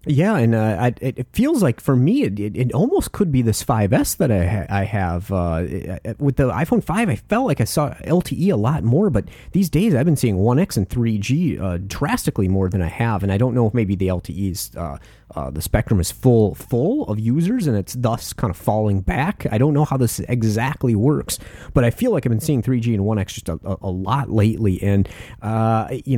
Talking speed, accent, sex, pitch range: 230 wpm, American, male, 100-130 Hz